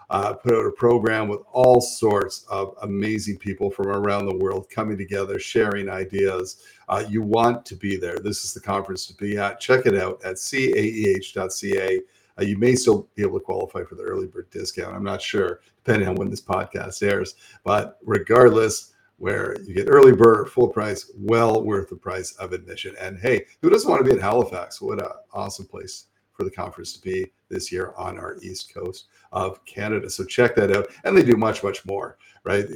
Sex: male